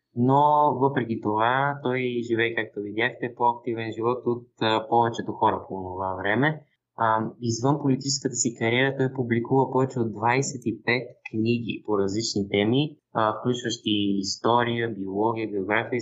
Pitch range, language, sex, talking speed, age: 105-135 Hz, Bulgarian, male, 130 wpm, 20-39